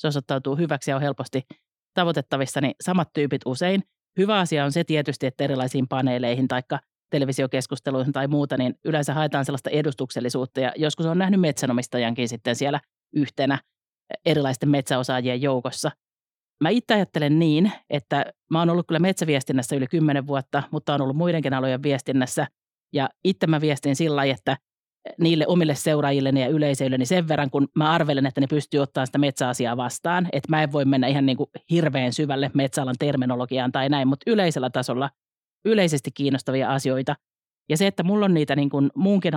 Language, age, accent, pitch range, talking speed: Finnish, 40-59, native, 135-155 Hz, 170 wpm